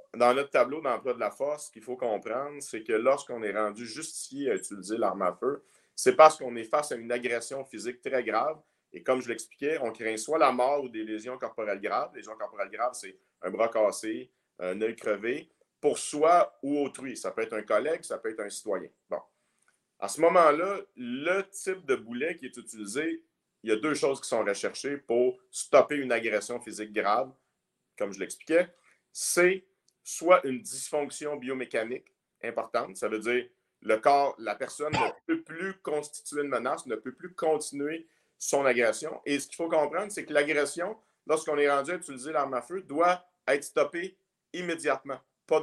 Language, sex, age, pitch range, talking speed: French, male, 50-69, 125-170 Hz, 190 wpm